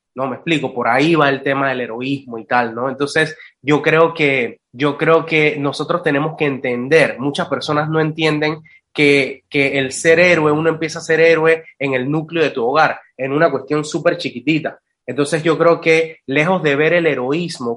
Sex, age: male, 20-39